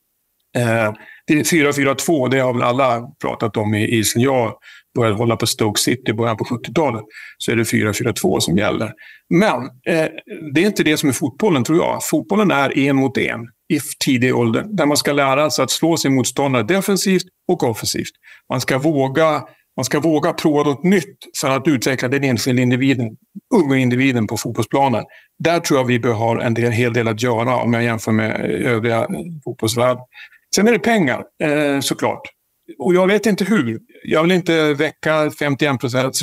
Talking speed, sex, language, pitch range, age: 180 wpm, male, Swedish, 115-155 Hz, 60-79